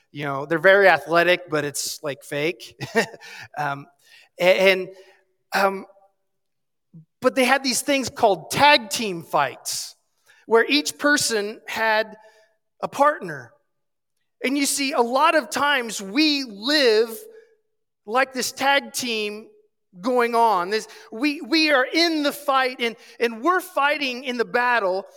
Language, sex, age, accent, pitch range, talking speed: English, male, 30-49, American, 190-285 Hz, 135 wpm